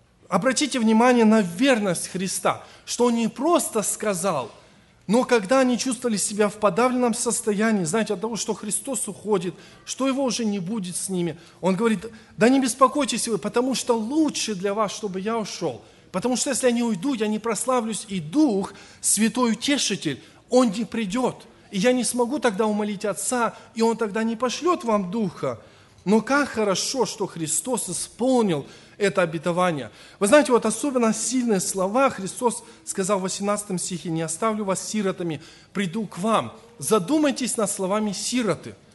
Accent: native